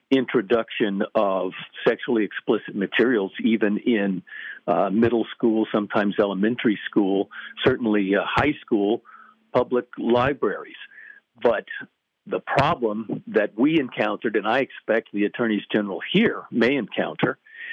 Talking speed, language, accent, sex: 115 wpm, English, American, male